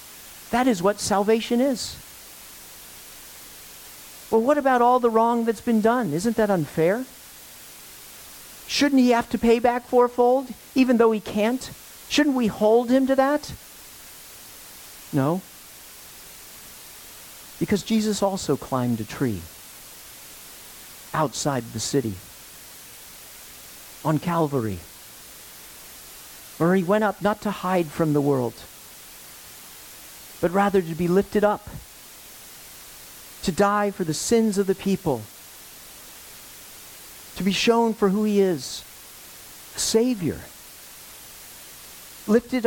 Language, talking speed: English, 110 wpm